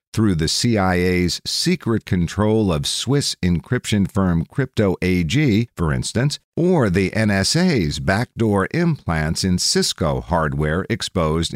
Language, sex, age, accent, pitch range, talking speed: English, male, 50-69, American, 85-115 Hz, 115 wpm